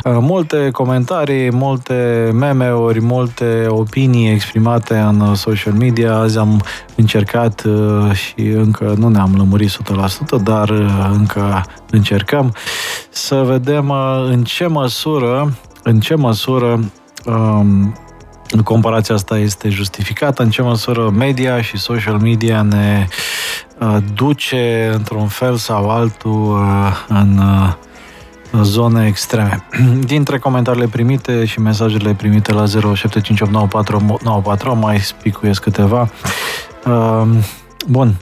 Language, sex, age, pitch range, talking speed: Romanian, male, 20-39, 105-125 Hz, 100 wpm